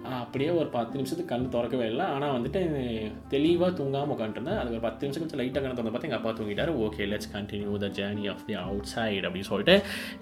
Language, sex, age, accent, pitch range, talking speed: Tamil, male, 20-39, native, 120-180 Hz, 200 wpm